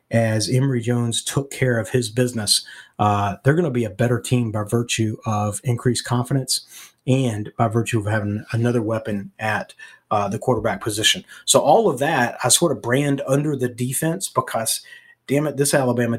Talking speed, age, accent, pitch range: 180 wpm, 40-59, American, 110-130 Hz